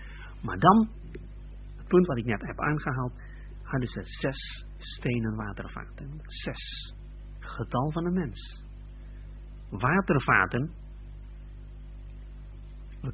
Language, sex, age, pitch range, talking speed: Dutch, male, 50-69, 95-135 Hz, 95 wpm